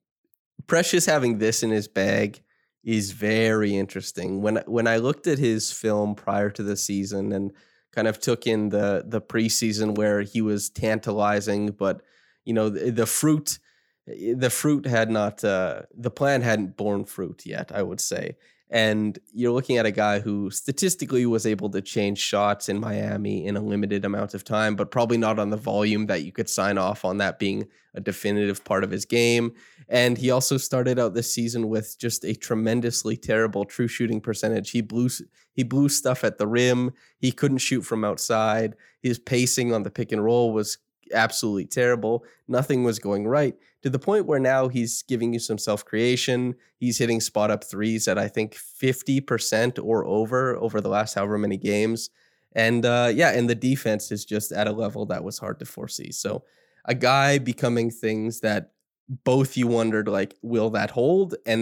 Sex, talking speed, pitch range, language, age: male, 185 wpm, 105-120 Hz, English, 20-39